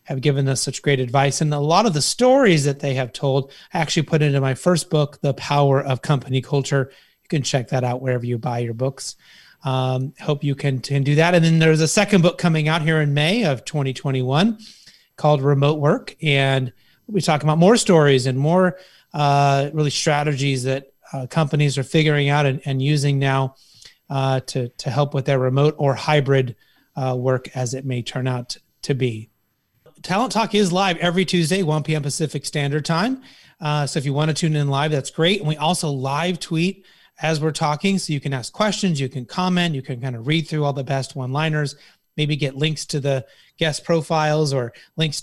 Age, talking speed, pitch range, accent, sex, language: 30-49, 210 wpm, 135-160 Hz, American, male, English